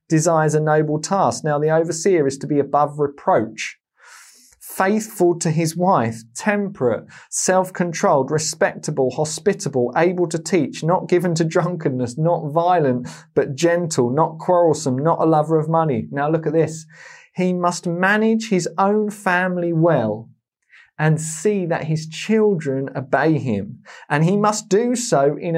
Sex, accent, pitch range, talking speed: male, British, 150-185 Hz, 145 wpm